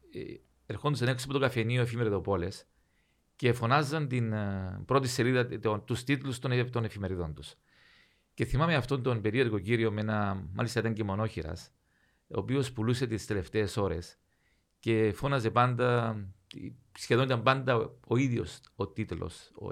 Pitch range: 100-125 Hz